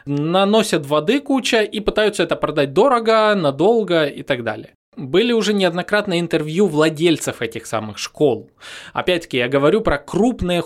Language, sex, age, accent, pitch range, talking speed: Russian, male, 20-39, native, 140-215 Hz, 140 wpm